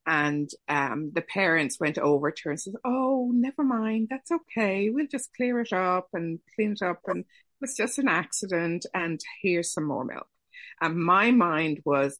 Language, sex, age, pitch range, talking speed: English, female, 50-69, 150-200 Hz, 190 wpm